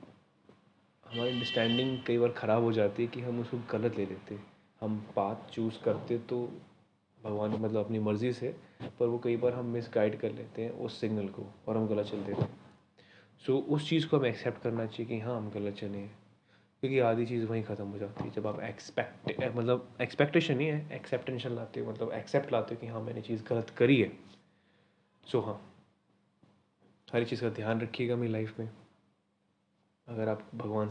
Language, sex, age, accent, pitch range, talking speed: Hindi, male, 20-39, native, 105-120 Hz, 200 wpm